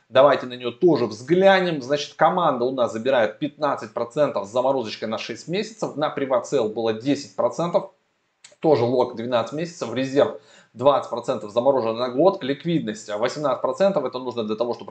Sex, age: male, 20-39